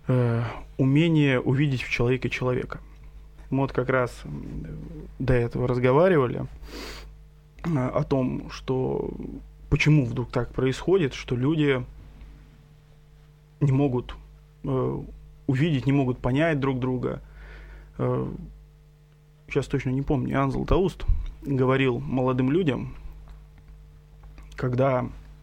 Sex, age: male, 20-39